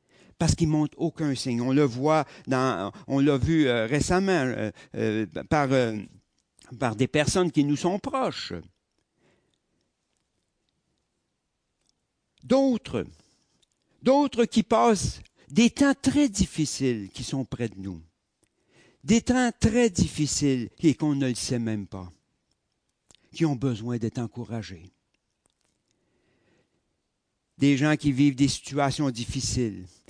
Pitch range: 120-170 Hz